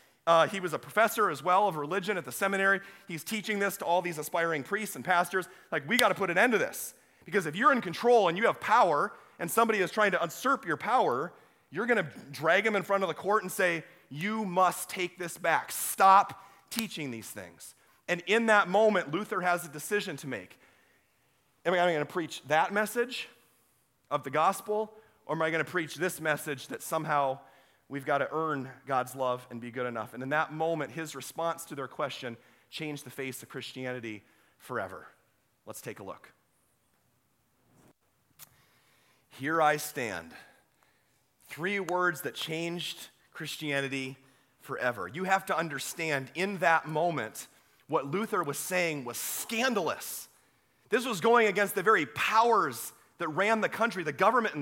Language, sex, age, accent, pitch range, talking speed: English, male, 30-49, American, 145-195 Hz, 180 wpm